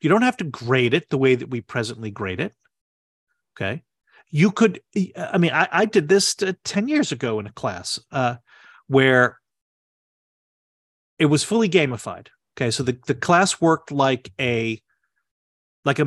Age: 40-59